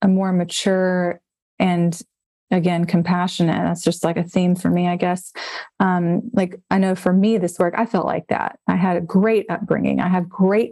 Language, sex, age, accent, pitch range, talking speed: English, female, 20-39, American, 180-220 Hz, 195 wpm